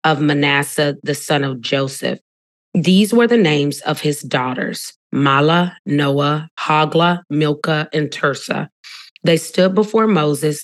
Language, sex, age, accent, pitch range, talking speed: English, female, 30-49, American, 145-180 Hz, 130 wpm